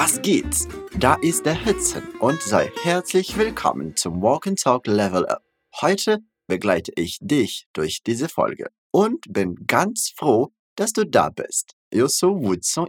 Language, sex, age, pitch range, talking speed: Portuguese, male, 20-39, 130-200 Hz, 165 wpm